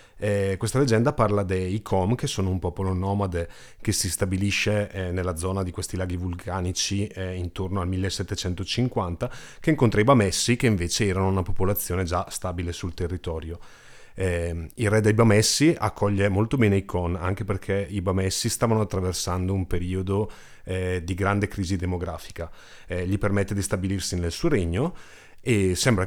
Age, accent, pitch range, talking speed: 30-49, native, 95-110 Hz, 165 wpm